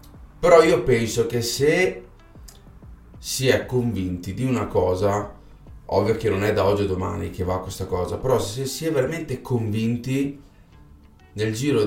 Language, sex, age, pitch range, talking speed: Italian, male, 30-49, 95-120 Hz, 155 wpm